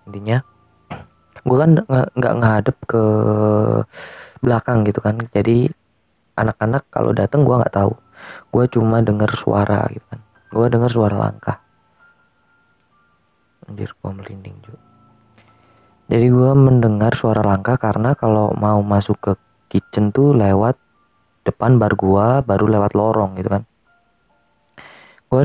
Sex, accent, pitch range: female, native, 100-120 Hz